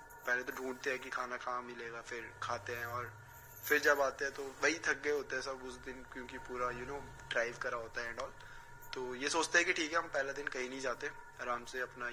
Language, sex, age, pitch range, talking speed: Hindi, male, 20-39, 130-180 Hz, 245 wpm